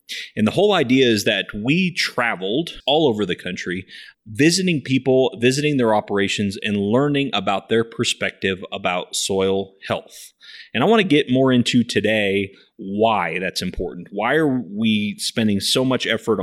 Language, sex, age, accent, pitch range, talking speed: English, male, 30-49, American, 105-140 Hz, 155 wpm